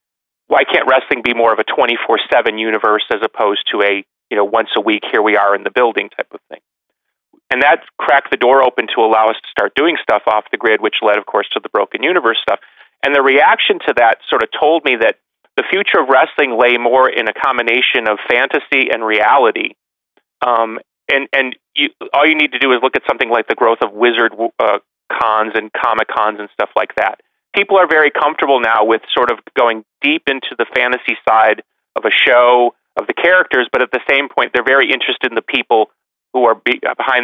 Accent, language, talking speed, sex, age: American, English, 220 wpm, male, 30-49